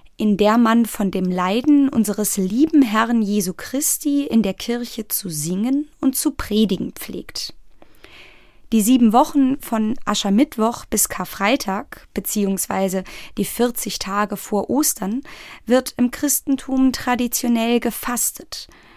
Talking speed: 120 wpm